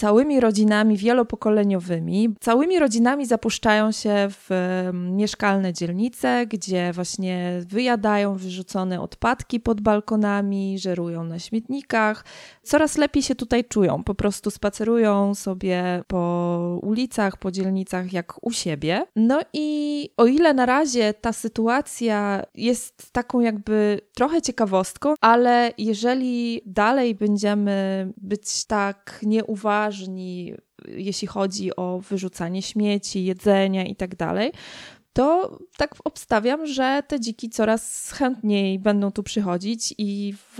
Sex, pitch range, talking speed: female, 195-235 Hz, 110 wpm